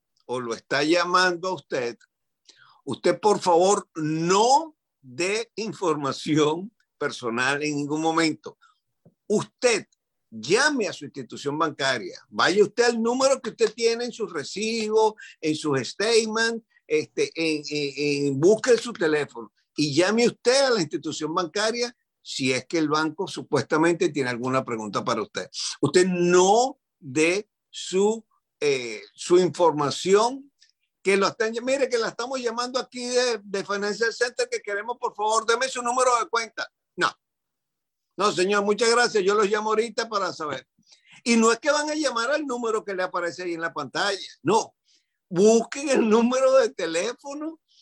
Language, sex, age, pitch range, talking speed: English, male, 50-69, 160-245 Hz, 150 wpm